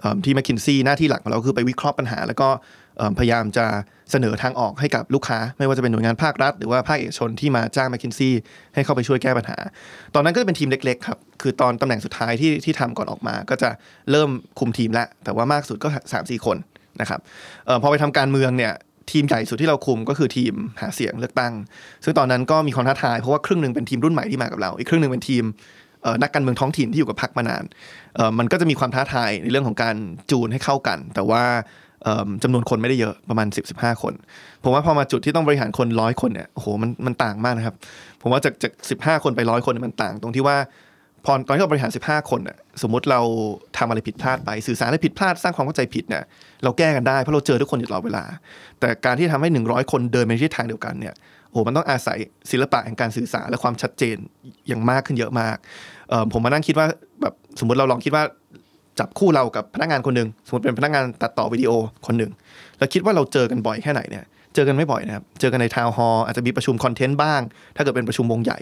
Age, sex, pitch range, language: 20-39, male, 115-145 Hz, Thai